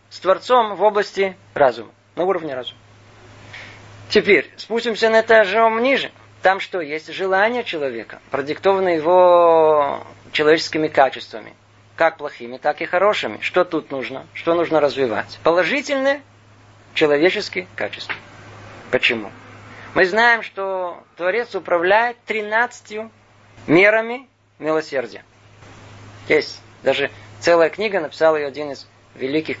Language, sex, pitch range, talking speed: Russian, male, 115-185 Hz, 110 wpm